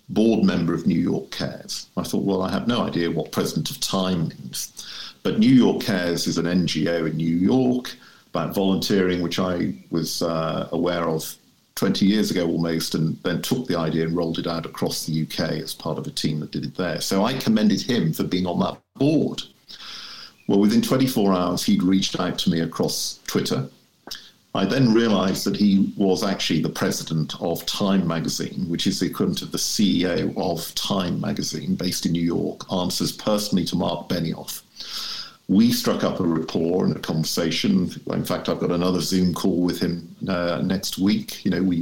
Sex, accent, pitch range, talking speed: male, British, 85-120 Hz, 195 wpm